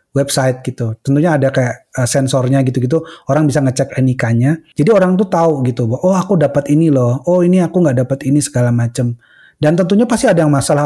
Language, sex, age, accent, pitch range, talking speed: Indonesian, male, 30-49, native, 135-170 Hz, 200 wpm